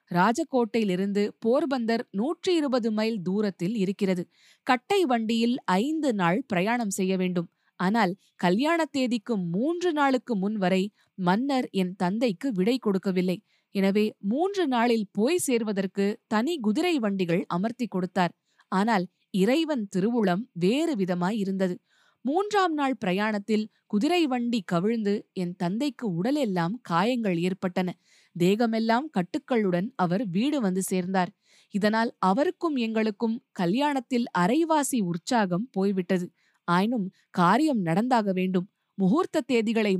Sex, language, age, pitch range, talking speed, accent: female, Tamil, 20-39, 185-255 Hz, 105 wpm, native